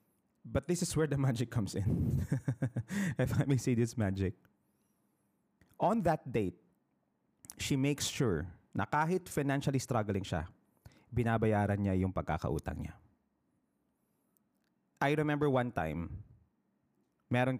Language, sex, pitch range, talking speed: Filipino, male, 100-135 Hz, 120 wpm